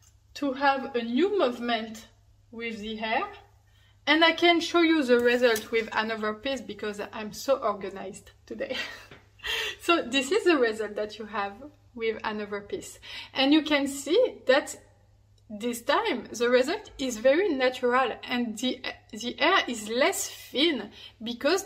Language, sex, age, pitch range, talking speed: English, female, 20-39, 220-300 Hz, 150 wpm